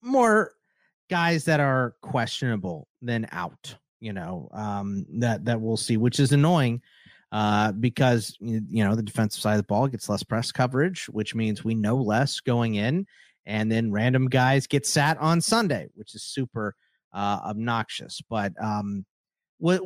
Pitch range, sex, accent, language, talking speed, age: 110-155 Hz, male, American, English, 165 wpm, 30-49